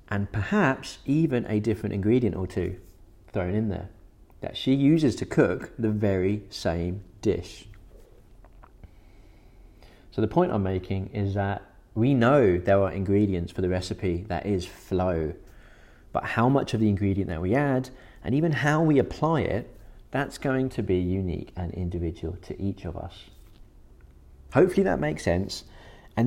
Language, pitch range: English, 90-125 Hz